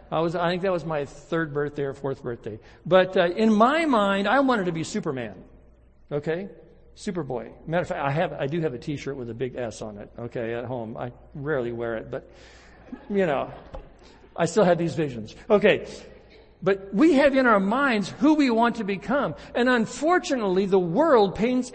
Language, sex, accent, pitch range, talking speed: English, male, American, 130-200 Hz, 200 wpm